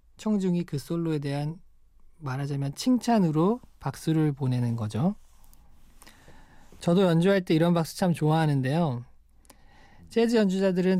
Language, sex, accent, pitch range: Korean, male, native, 125-175 Hz